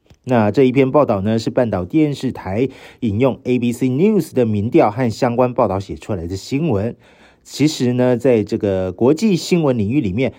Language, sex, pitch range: Chinese, male, 105-135 Hz